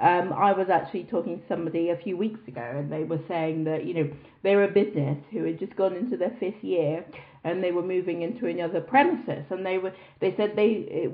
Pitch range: 170-220 Hz